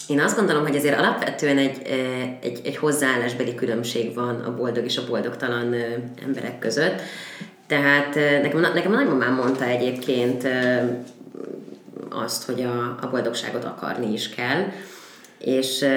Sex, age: female, 30-49